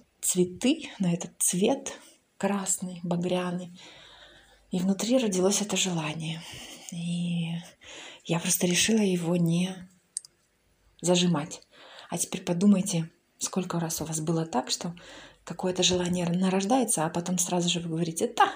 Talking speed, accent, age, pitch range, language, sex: 125 wpm, native, 20-39, 170-195 Hz, Ukrainian, female